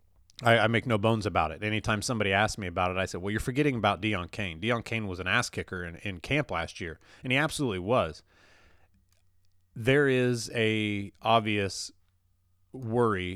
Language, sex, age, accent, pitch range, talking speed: English, male, 30-49, American, 90-115 Hz, 180 wpm